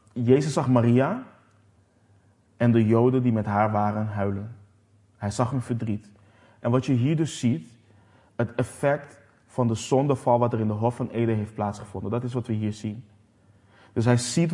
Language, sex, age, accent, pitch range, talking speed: Dutch, male, 20-39, Dutch, 105-125 Hz, 180 wpm